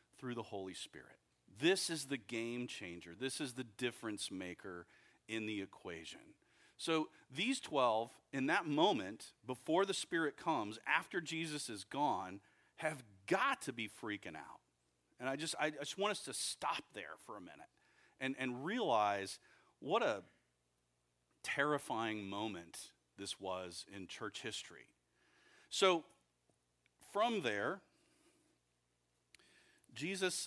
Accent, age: American, 40-59